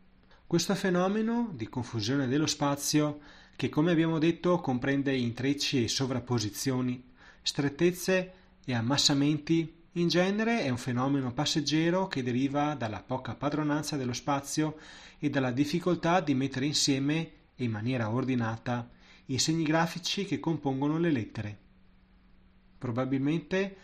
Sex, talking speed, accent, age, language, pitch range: male, 120 wpm, native, 30-49, Italian, 125-165 Hz